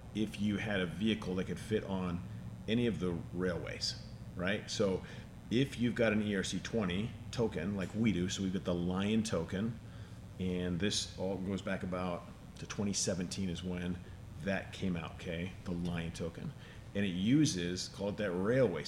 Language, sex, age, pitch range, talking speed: English, male, 40-59, 90-110 Hz, 170 wpm